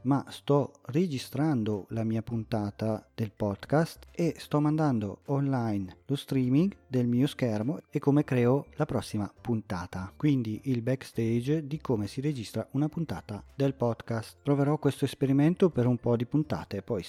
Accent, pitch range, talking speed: native, 110-140 Hz, 150 wpm